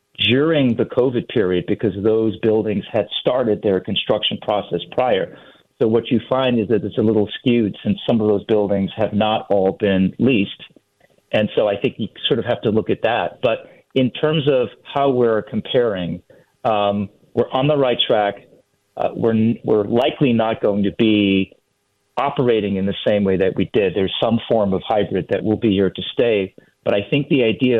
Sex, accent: male, American